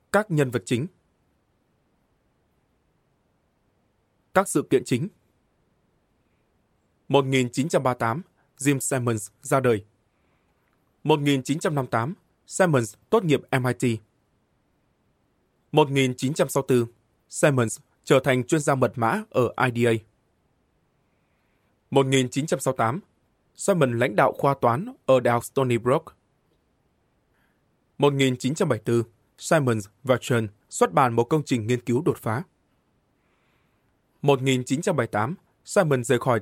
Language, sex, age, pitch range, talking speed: Vietnamese, male, 20-39, 120-140 Hz, 90 wpm